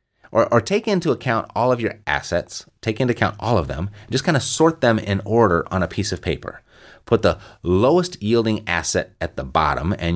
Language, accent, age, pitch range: English, American, 30-49, 90-120 Hz